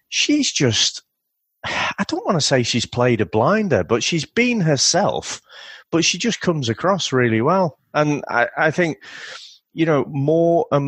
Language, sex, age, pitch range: English, male, 30-49, 105-145 Hz